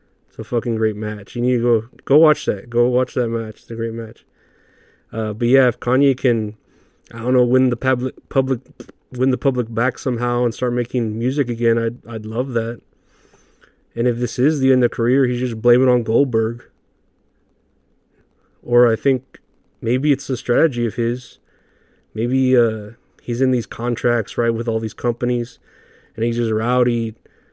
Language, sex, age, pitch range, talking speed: English, male, 30-49, 115-125 Hz, 185 wpm